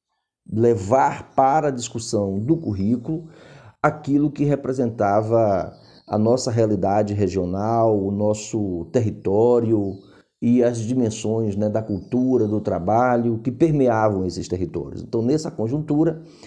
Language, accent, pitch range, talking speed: Portuguese, Brazilian, 105-135 Hz, 115 wpm